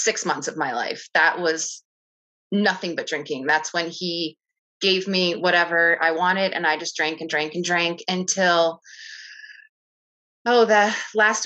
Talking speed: 155 wpm